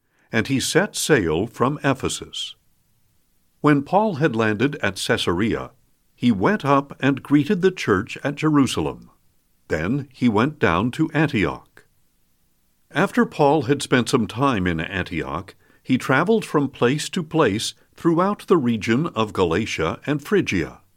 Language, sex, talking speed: English, male, 135 wpm